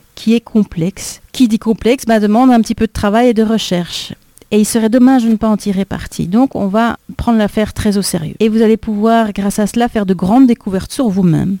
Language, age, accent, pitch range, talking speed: French, 50-69, French, 190-230 Hz, 245 wpm